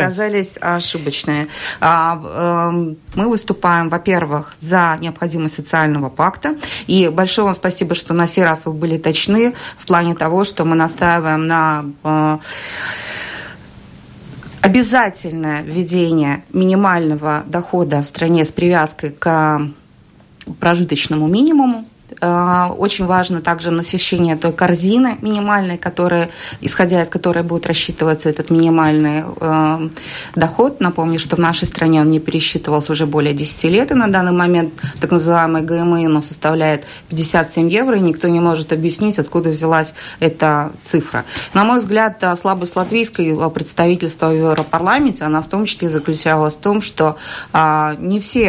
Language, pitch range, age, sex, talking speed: Russian, 155-185 Hz, 20-39, female, 130 wpm